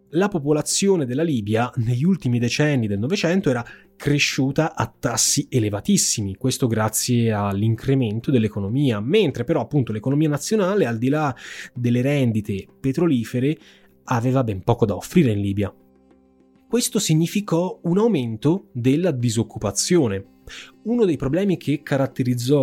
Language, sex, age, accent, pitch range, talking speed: Italian, male, 20-39, native, 115-155 Hz, 125 wpm